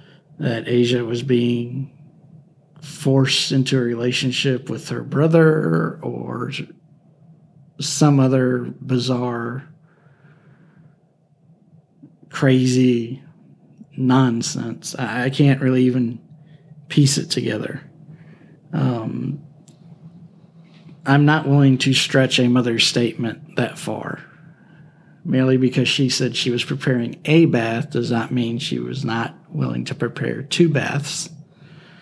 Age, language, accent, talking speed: 40-59, English, American, 105 wpm